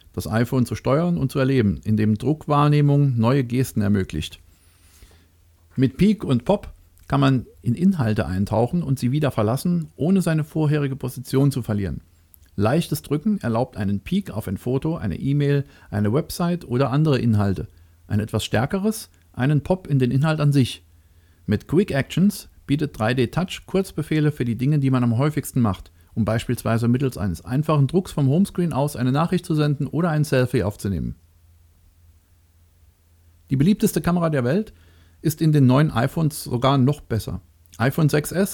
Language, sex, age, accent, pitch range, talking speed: German, male, 40-59, German, 100-150 Hz, 160 wpm